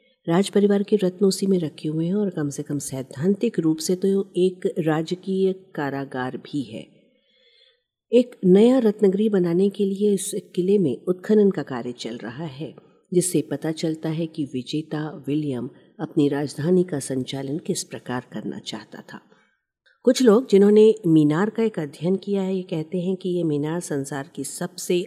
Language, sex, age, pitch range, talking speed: Hindi, female, 50-69, 140-185 Hz, 170 wpm